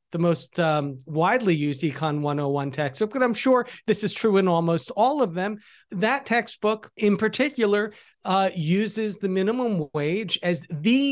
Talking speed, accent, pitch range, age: 160 wpm, American, 180-235 Hz, 40-59